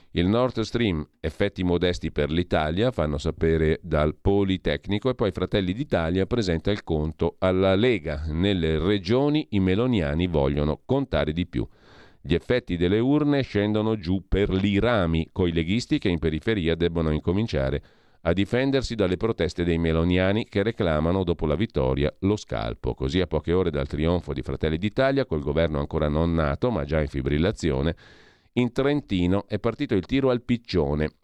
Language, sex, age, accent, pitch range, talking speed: Italian, male, 40-59, native, 80-105 Hz, 160 wpm